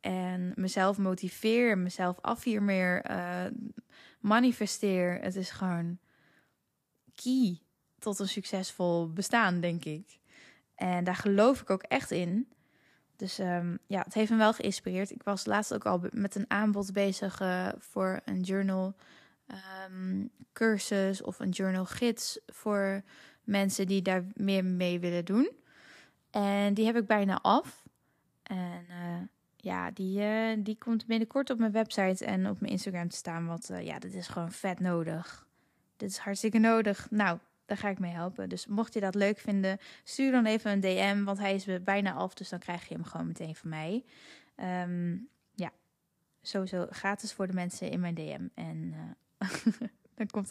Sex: female